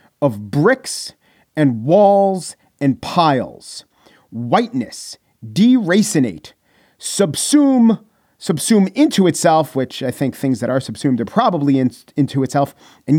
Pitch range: 135-190 Hz